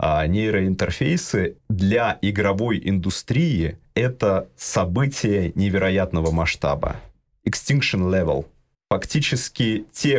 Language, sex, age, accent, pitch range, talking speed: Russian, male, 30-49, native, 85-110 Hz, 80 wpm